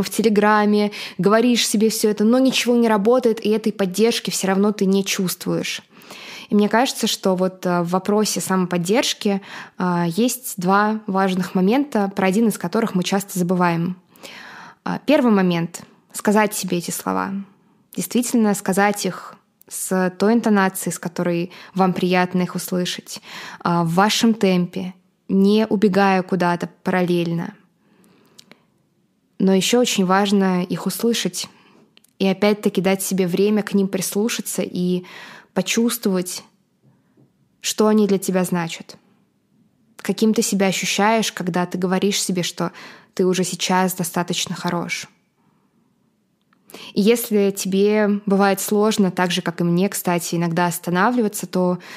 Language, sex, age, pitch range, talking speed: Russian, female, 20-39, 185-215 Hz, 130 wpm